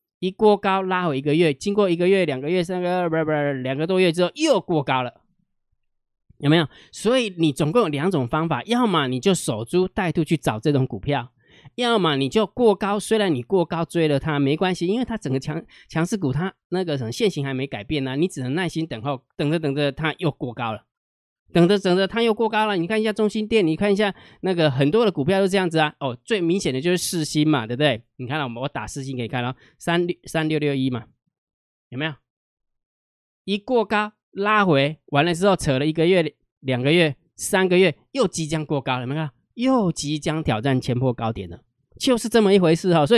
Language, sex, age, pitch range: Chinese, male, 20-39, 135-185 Hz